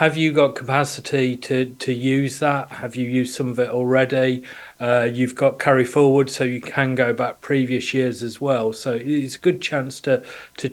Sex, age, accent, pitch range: male, 40-59, British, 125-140 Hz